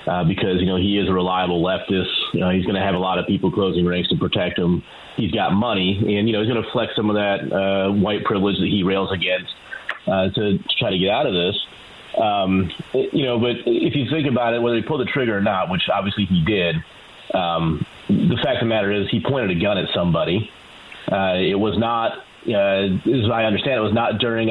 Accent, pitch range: American, 100-115 Hz